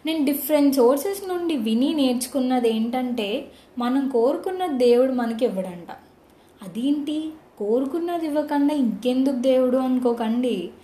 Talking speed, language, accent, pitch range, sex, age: 95 wpm, Telugu, native, 225-295 Hz, female, 20-39